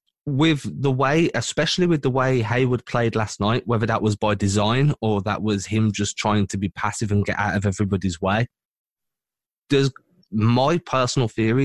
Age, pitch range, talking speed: 20-39, 105-130 Hz, 180 wpm